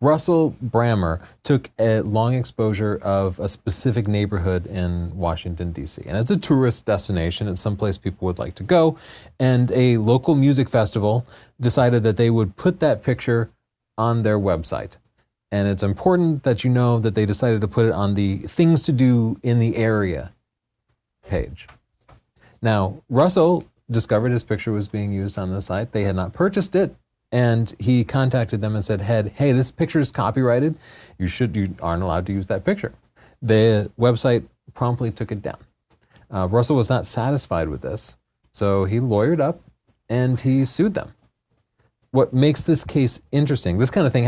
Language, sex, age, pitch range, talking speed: English, male, 30-49, 105-130 Hz, 175 wpm